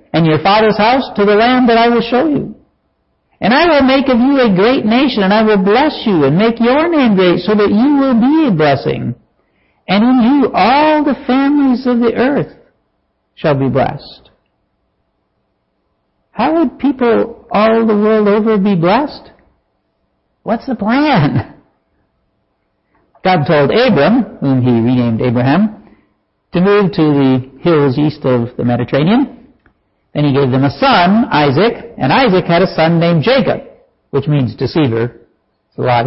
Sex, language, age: male, English, 60-79